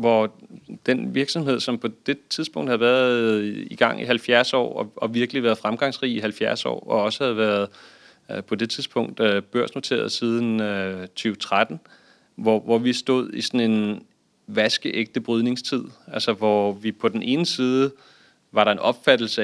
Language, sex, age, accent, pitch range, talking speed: Danish, male, 30-49, native, 110-125 Hz, 150 wpm